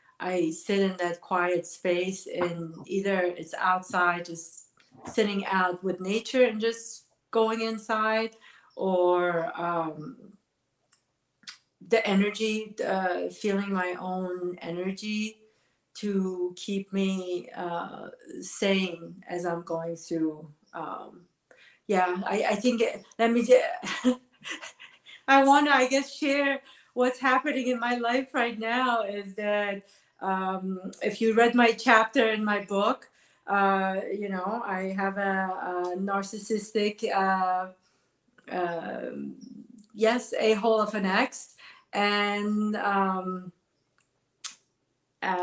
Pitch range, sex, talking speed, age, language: 180-225 Hz, female, 115 wpm, 40-59, English